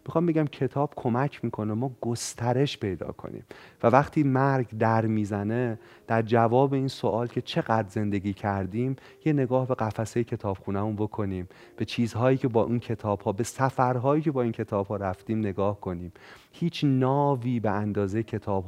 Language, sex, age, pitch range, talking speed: Persian, male, 30-49, 105-130 Hz, 165 wpm